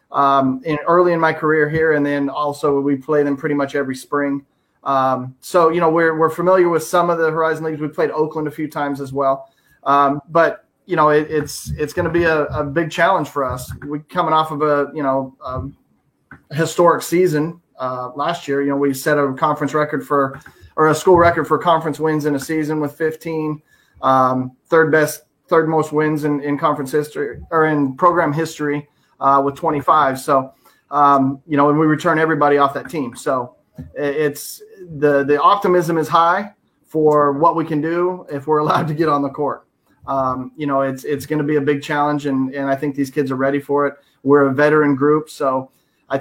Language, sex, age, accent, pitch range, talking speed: English, male, 30-49, American, 140-160 Hz, 215 wpm